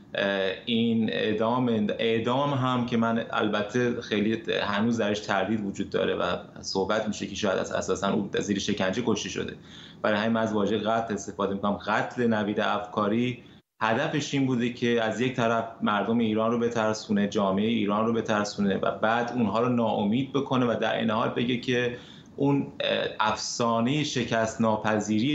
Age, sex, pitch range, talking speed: 30-49, male, 105-125 Hz, 165 wpm